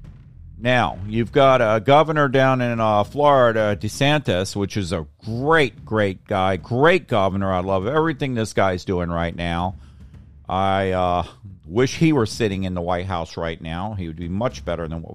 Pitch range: 95-150 Hz